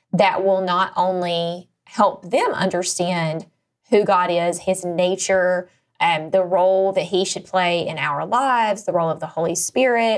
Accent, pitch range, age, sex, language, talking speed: American, 180-215 Hz, 20-39, female, English, 170 wpm